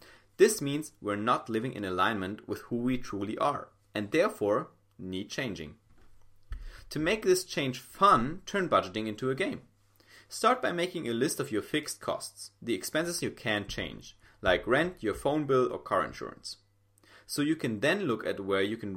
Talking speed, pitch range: 180 wpm, 100-145 Hz